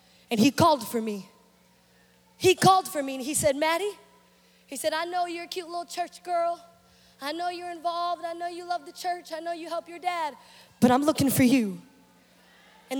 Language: English